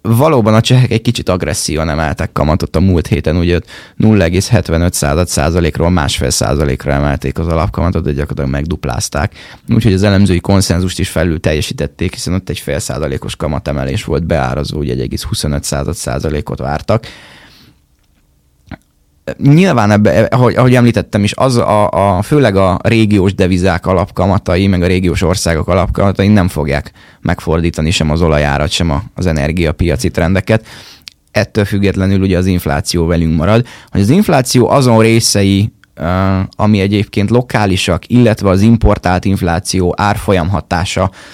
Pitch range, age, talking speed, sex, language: 85-110 Hz, 20-39, 120 wpm, male, Hungarian